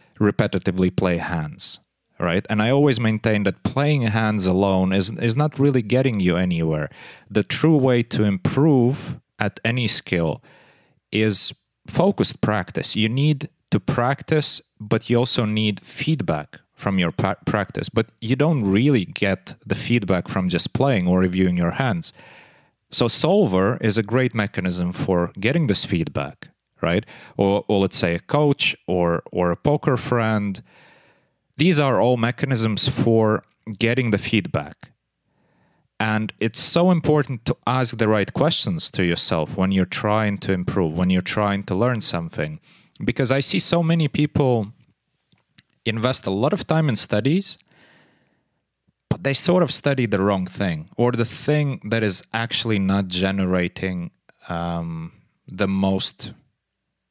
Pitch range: 95-135 Hz